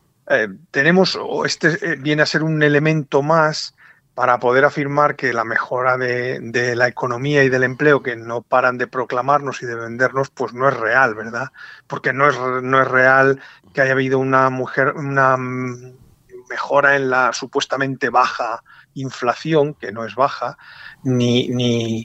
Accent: Spanish